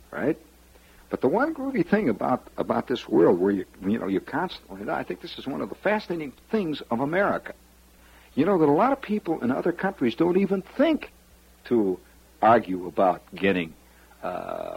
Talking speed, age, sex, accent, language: 185 wpm, 60-79, male, American, English